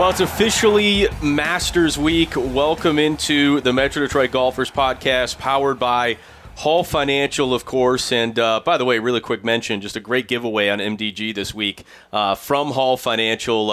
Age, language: 30-49, English